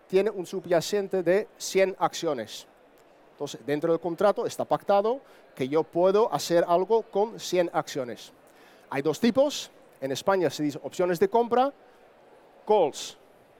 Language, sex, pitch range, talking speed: Spanish, male, 160-210 Hz, 135 wpm